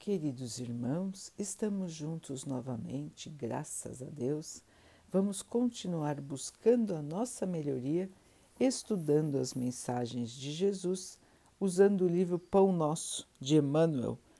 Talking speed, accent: 110 wpm, Brazilian